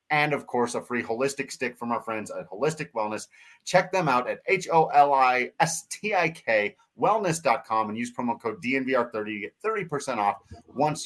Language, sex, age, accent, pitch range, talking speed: English, male, 30-49, American, 115-155 Hz, 150 wpm